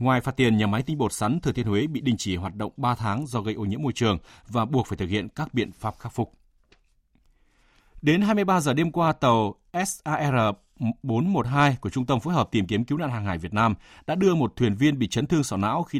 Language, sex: Vietnamese, male